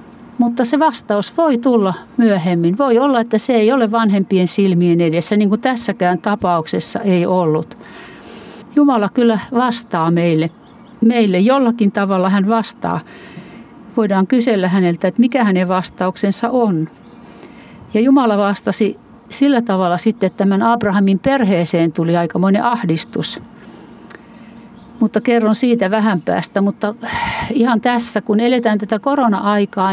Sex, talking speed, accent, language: female, 125 wpm, native, Finnish